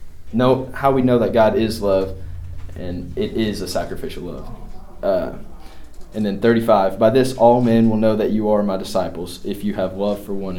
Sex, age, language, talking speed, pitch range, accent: male, 20-39, English, 195 wpm, 90-110 Hz, American